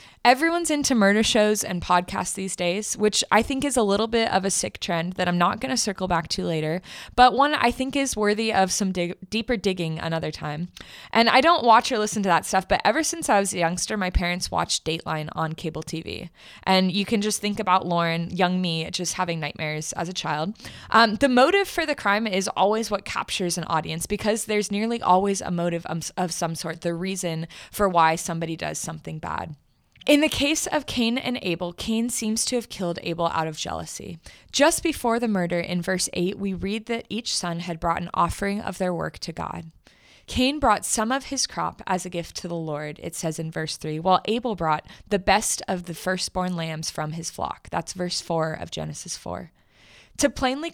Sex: female